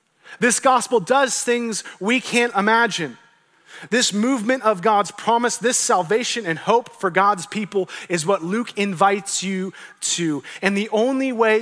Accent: American